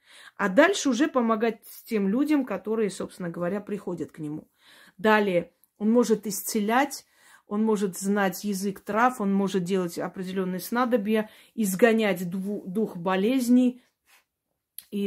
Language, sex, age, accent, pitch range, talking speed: Russian, female, 30-49, native, 190-220 Hz, 120 wpm